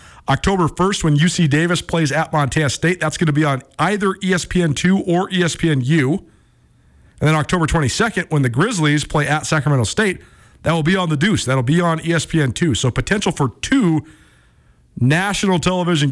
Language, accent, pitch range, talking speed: English, American, 125-170 Hz, 170 wpm